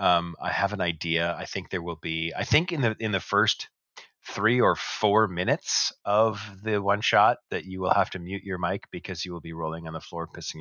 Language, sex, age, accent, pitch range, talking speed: English, male, 30-49, American, 85-105 Hz, 240 wpm